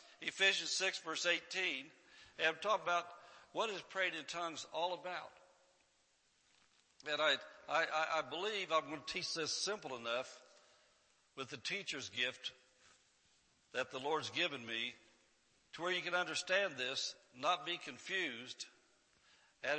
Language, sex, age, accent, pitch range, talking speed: English, male, 60-79, American, 145-175 Hz, 140 wpm